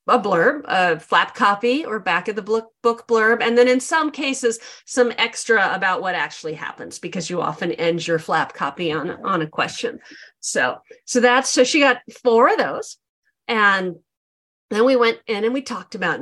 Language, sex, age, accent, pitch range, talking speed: English, female, 40-59, American, 180-255 Hz, 190 wpm